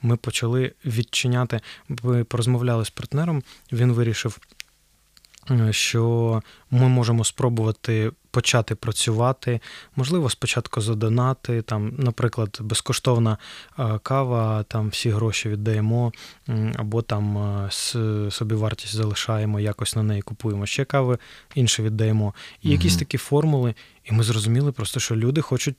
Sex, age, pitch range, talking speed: male, 20-39, 110-130 Hz, 115 wpm